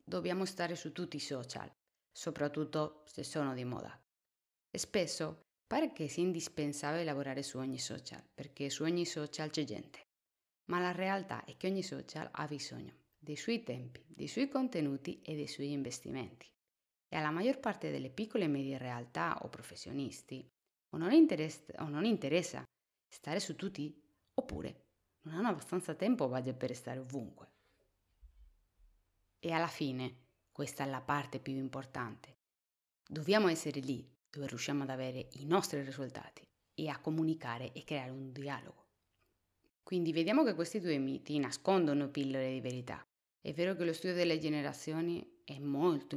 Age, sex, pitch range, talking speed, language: 30-49, female, 130-165 Hz, 155 wpm, Italian